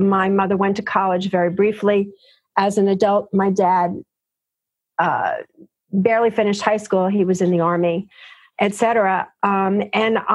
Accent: American